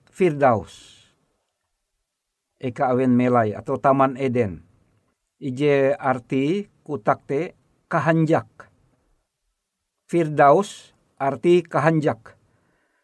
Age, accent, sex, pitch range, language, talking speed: 50-69, native, male, 135-175 Hz, Indonesian, 70 wpm